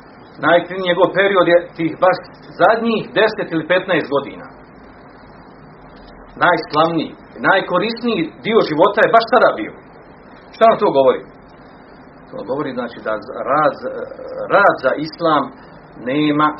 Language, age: Croatian, 40-59